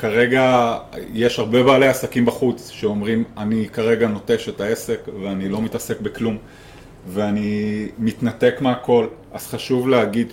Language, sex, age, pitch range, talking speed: English, male, 30-49, 115-135 Hz, 130 wpm